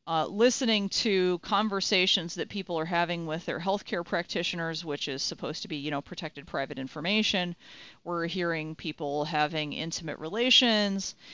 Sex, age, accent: female, 40-59, American